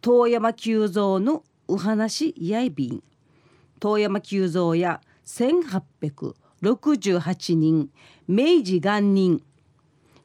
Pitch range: 155-225 Hz